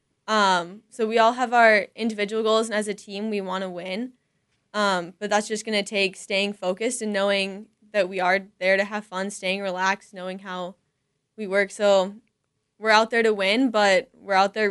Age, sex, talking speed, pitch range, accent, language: 10-29, female, 205 wpm, 190-215 Hz, American, English